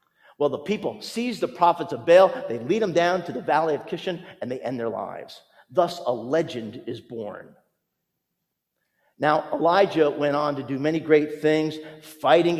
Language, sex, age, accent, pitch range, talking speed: English, male, 50-69, American, 140-195 Hz, 175 wpm